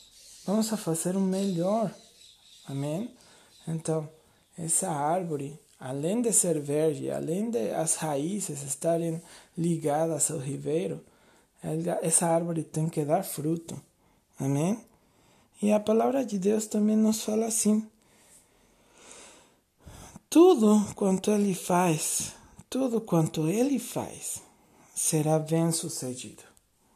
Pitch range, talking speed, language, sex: 160-215 Hz, 105 wpm, Portuguese, male